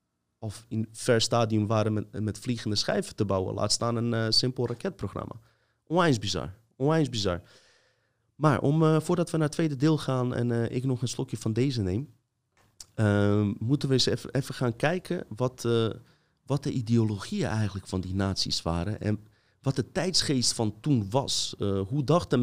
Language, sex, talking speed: Dutch, male, 180 wpm